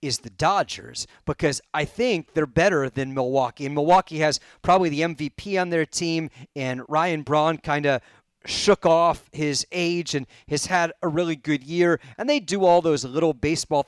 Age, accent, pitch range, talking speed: 40-59, American, 140-190 Hz, 180 wpm